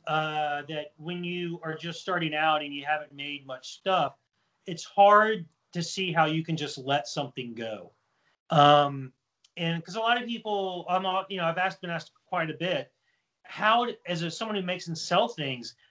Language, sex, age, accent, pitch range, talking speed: English, male, 30-49, American, 145-175 Hz, 195 wpm